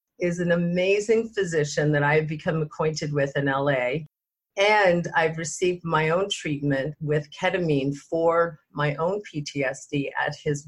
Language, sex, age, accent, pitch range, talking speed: English, female, 40-59, American, 150-180 Hz, 140 wpm